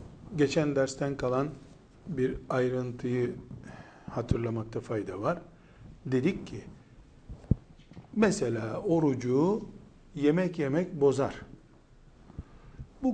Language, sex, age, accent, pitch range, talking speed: Turkish, male, 60-79, native, 130-165 Hz, 75 wpm